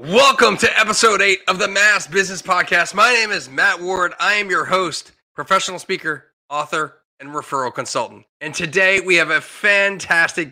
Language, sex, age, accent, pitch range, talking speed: English, male, 30-49, American, 150-190 Hz, 170 wpm